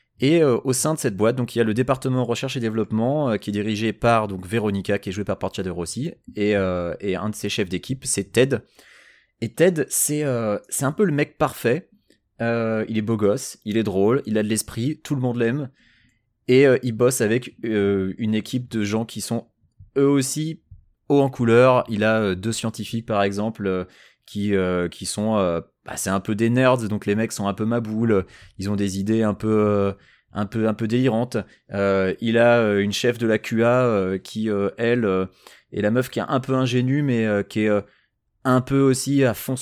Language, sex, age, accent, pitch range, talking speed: French, male, 20-39, French, 100-125 Hz, 230 wpm